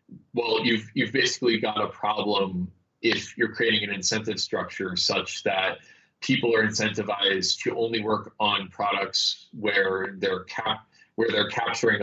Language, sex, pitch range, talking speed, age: English, male, 90-105 Hz, 145 wpm, 30-49